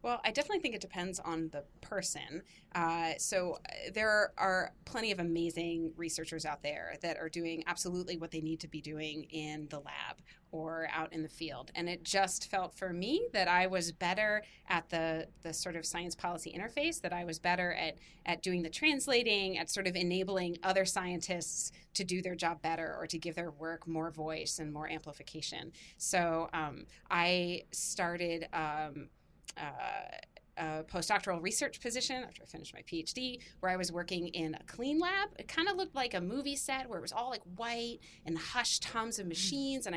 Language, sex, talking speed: English, female, 195 wpm